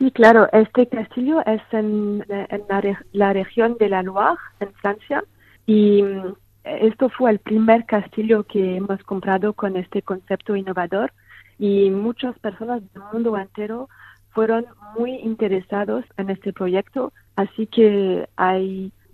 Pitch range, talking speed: 190-220 Hz, 135 wpm